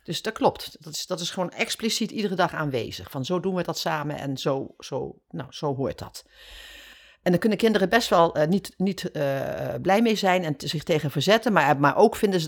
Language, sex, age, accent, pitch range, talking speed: Dutch, female, 50-69, Dutch, 150-220 Hz, 230 wpm